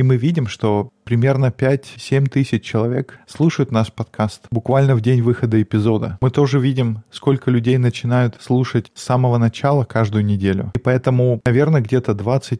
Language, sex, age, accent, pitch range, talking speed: Russian, male, 20-39, native, 110-135 Hz, 155 wpm